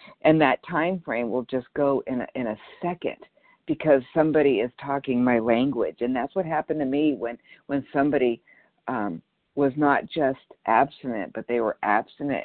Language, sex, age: English, female, 50-69